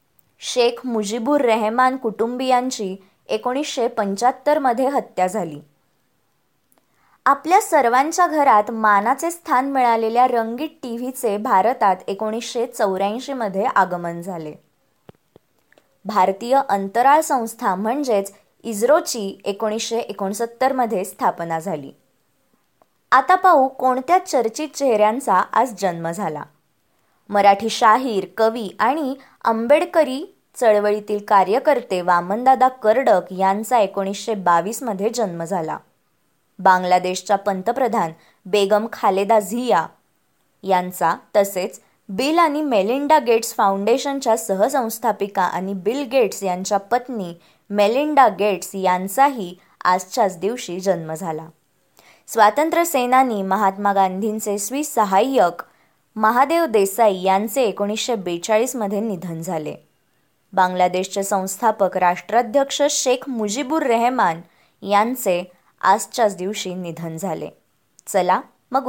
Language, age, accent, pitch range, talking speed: Marathi, 20-39, native, 195-250 Hz, 90 wpm